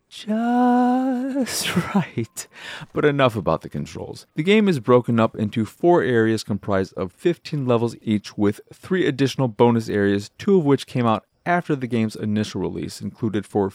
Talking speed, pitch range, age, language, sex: 160 wpm, 105-150 Hz, 30-49, English, male